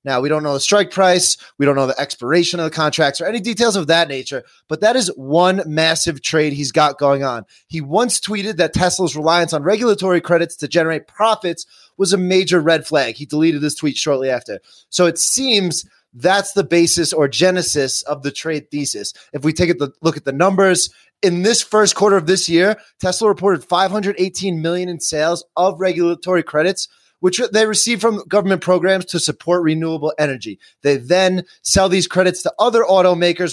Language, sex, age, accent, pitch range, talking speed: English, male, 30-49, American, 155-190 Hz, 195 wpm